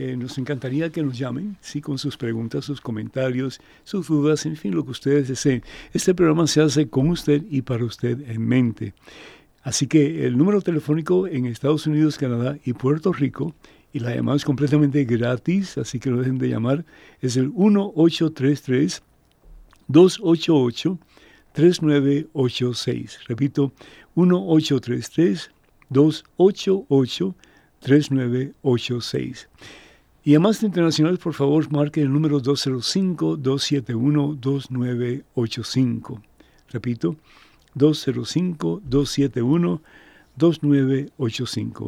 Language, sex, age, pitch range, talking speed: Spanish, male, 60-79, 125-155 Hz, 110 wpm